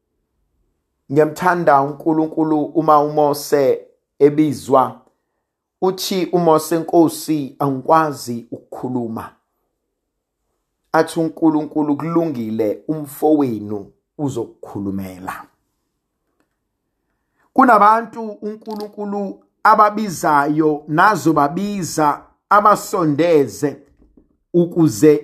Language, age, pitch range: English, 50-69, 120-165 Hz